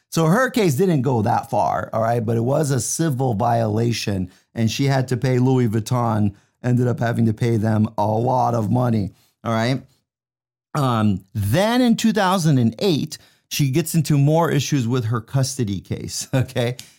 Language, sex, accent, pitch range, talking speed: English, male, American, 115-145 Hz, 170 wpm